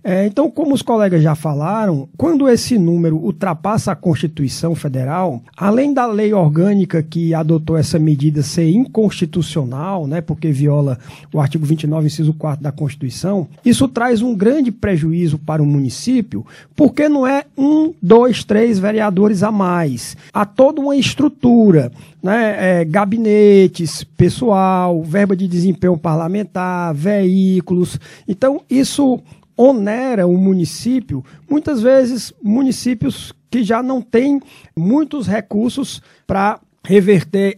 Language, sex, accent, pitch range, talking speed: Portuguese, male, Brazilian, 165-230 Hz, 125 wpm